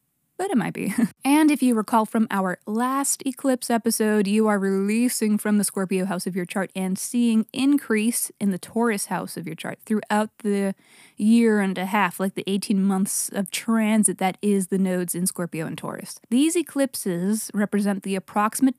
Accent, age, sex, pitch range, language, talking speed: American, 20-39, female, 195-245 Hz, English, 185 wpm